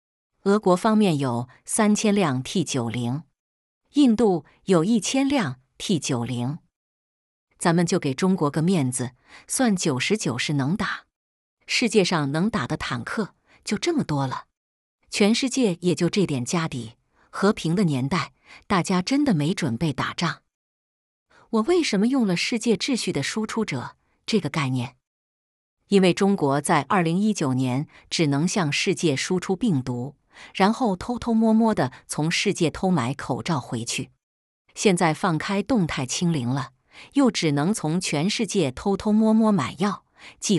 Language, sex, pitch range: Chinese, female, 140-210 Hz